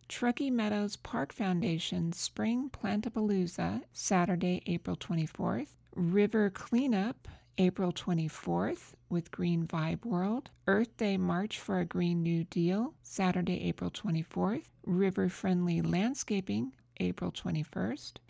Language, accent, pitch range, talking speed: English, American, 170-220 Hz, 110 wpm